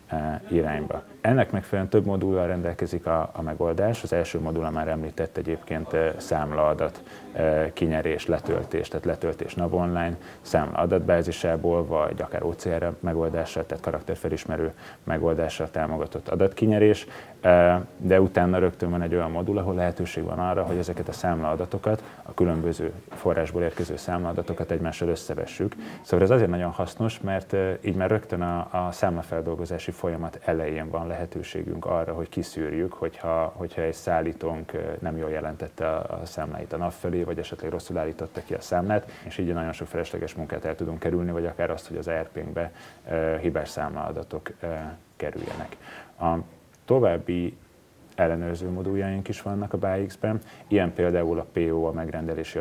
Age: 30-49